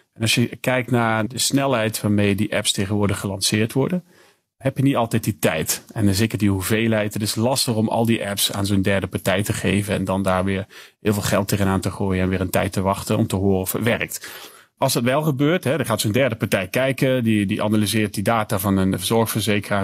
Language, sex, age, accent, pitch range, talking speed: Dutch, male, 40-59, Dutch, 100-120 Hz, 235 wpm